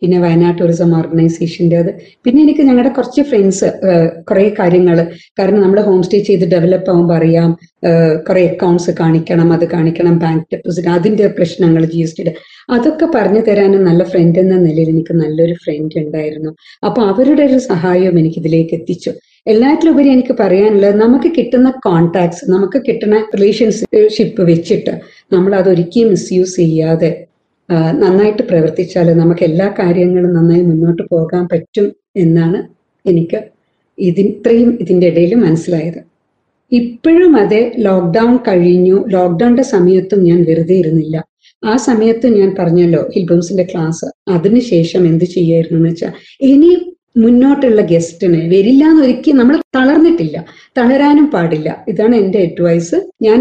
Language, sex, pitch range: Malayalam, female, 170-225 Hz